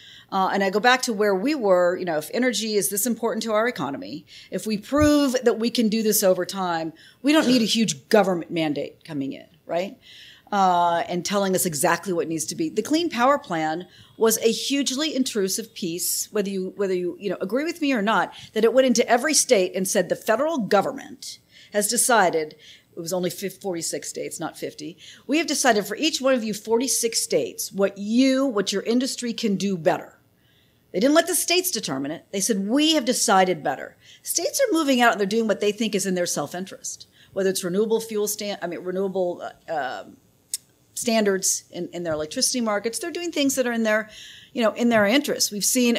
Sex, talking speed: female, 210 wpm